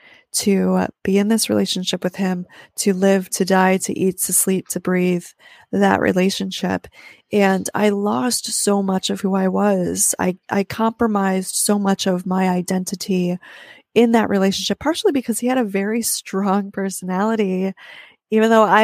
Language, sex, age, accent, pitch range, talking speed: English, female, 20-39, American, 185-225 Hz, 160 wpm